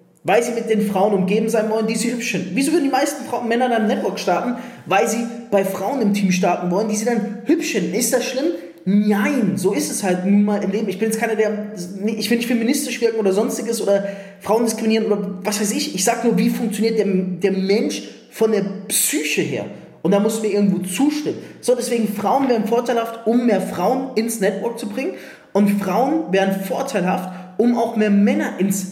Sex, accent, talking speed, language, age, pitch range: male, German, 220 wpm, German, 20-39, 185-235 Hz